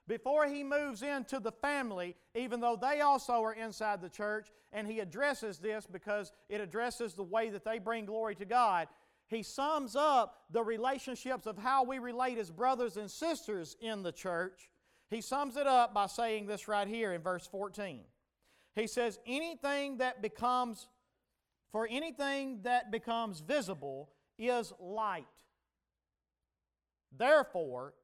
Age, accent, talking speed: 40-59, American, 150 wpm